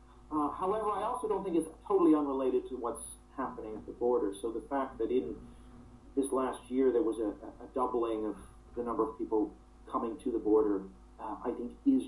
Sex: male